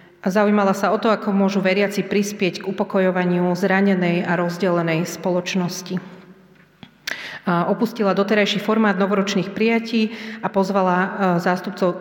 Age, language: 30-49, Slovak